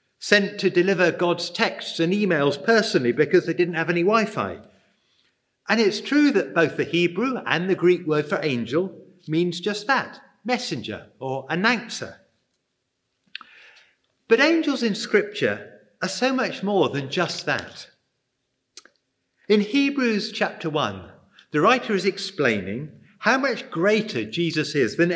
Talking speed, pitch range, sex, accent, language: 140 wpm, 165-230 Hz, male, British, English